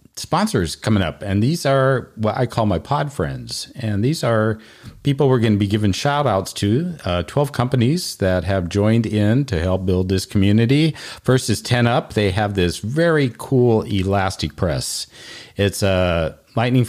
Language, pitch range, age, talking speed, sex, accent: English, 95-125 Hz, 40-59, 180 wpm, male, American